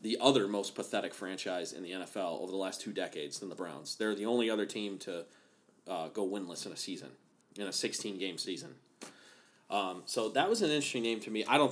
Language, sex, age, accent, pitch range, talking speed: English, male, 30-49, American, 100-120 Hz, 220 wpm